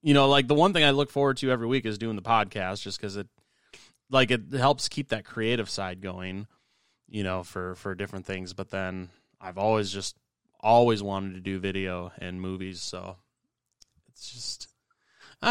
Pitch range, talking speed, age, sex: 95-115 Hz, 190 wpm, 20-39, male